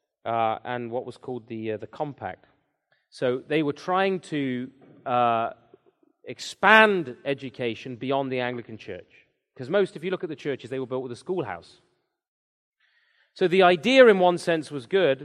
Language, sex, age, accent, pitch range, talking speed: English, male, 30-49, British, 120-160 Hz, 170 wpm